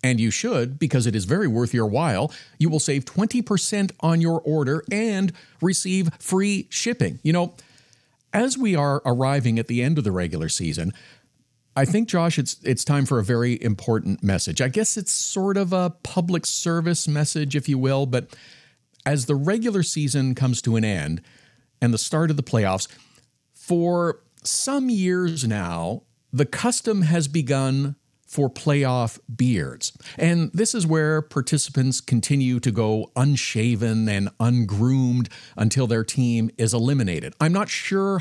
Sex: male